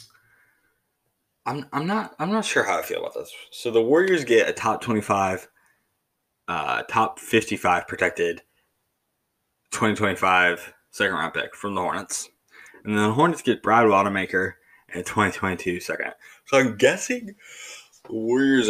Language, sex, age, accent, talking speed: English, male, 20-39, American, 150 wpm